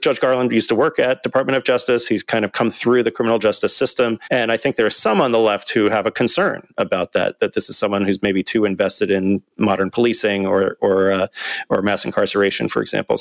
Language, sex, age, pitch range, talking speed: English, male, 30-49, 100-120 Hz, 235 wpm